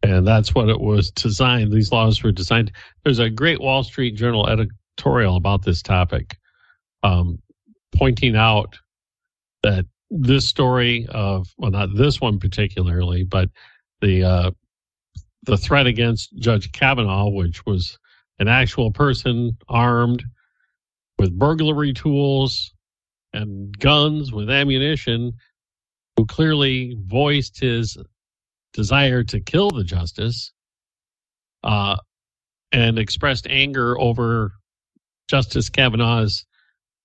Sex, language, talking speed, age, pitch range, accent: male, English, 110 wpm, 50-69, 100-130 Hz, American